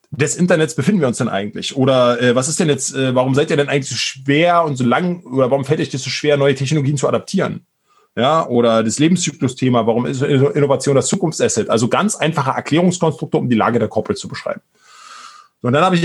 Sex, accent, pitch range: male, German, 120-155 Hz